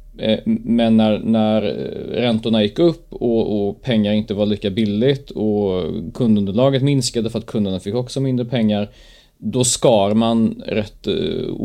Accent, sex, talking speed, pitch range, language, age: native, male, 145 wpm, 100-120 Hz, Swedish, 30-49